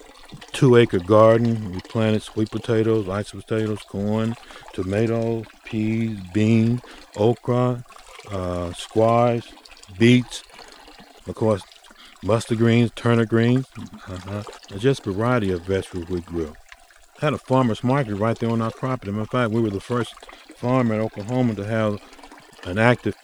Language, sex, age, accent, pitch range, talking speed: English, male, 50-69, American, 100-120 Hz, 140 wpm